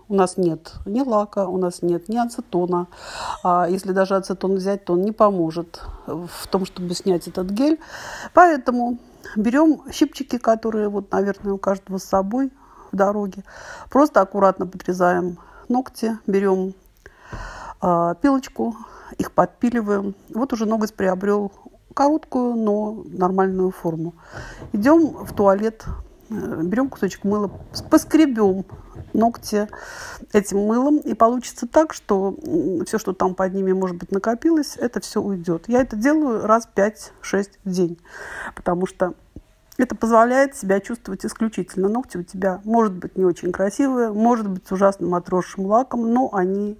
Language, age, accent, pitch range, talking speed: Russian, 50-69, native, 185-240 Hz, 135 wpm